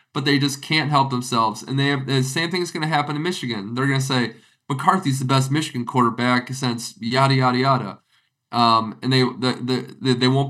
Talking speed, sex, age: 200 wpm, male, 20-39